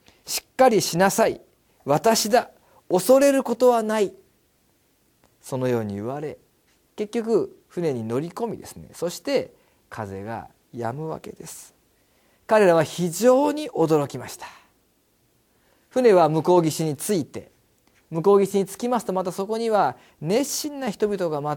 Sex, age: male, 40-59